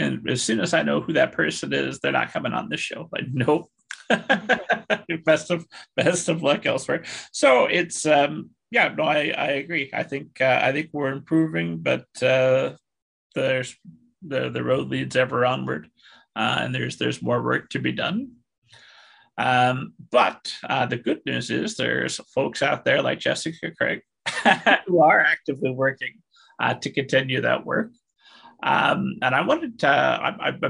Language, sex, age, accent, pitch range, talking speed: English, male, 30-49, American, 115-145 Hz, 165 wpm